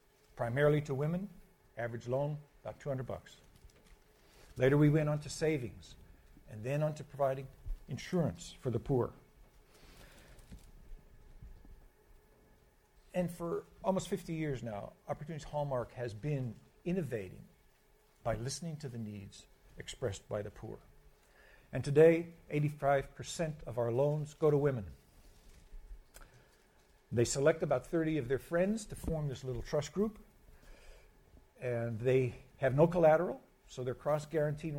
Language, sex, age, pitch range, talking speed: English, male, 60-79, 125-165 Hz, 125 wpm